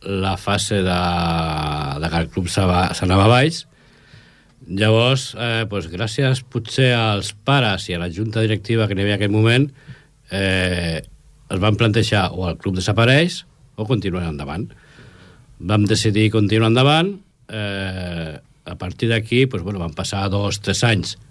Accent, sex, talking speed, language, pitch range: Spanish, male, 145 wpm, Italian, 95-130 Hz